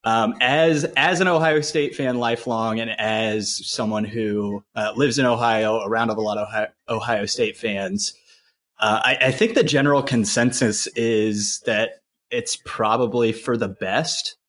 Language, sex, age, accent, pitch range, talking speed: English, male, 30-49, American, 110-145 Hz, 155 wpm